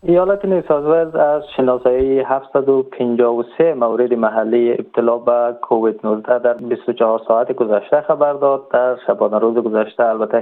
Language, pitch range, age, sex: Persian, 115-135 Hz, 20-39, male